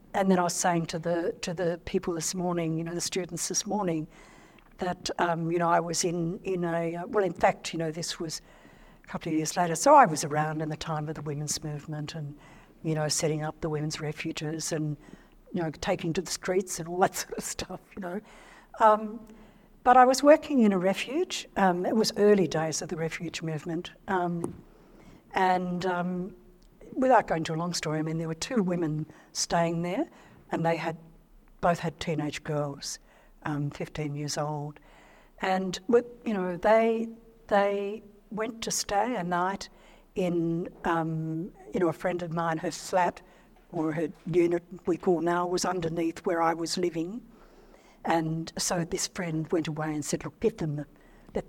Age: 60-79